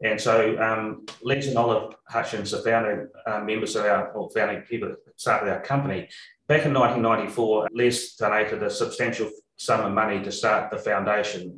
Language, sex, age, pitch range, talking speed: English, male, 30-49, 100-115 Hz, 170 wpm